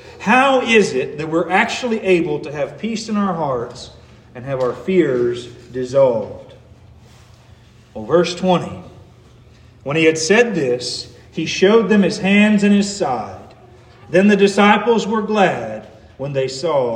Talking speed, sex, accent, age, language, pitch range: 150 wpm, male, American, 40-59, English, 150-220 Hz